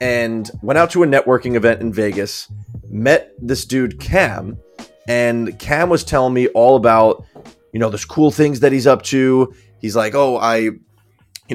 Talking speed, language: 175 wpm, English